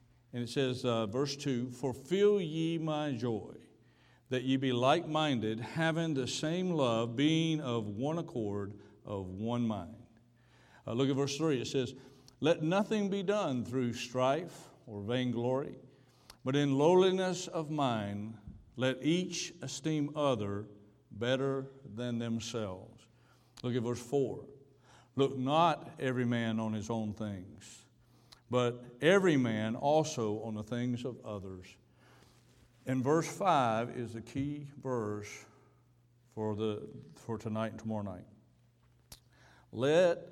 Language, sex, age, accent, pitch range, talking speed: English, male, 60-79, American, 110-135 Hz, 130 wpm